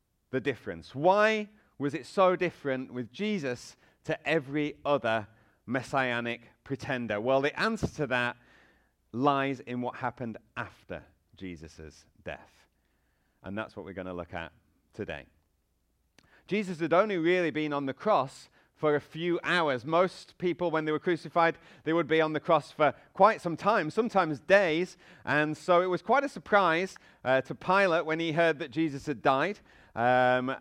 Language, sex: English, male